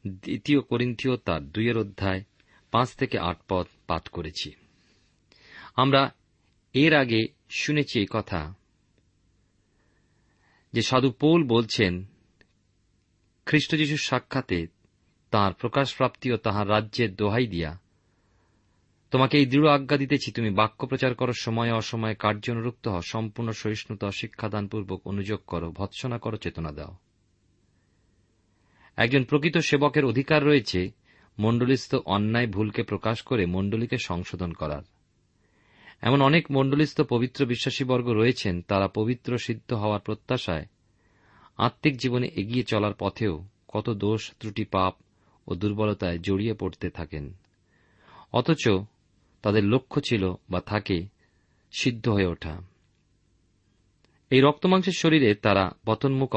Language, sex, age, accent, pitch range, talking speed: Bengali, male, 40-59, native, 95-125 Hz, 110 wpm